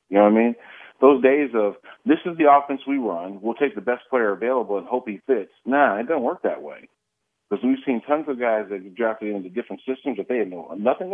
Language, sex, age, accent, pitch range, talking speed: English, male, 40-59, American, 100-125 Hz, 250 wpm